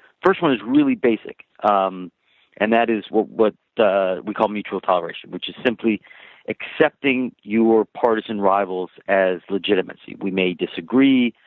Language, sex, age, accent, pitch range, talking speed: English, male, 40-59, American, 100-125 Hz, 145 wpm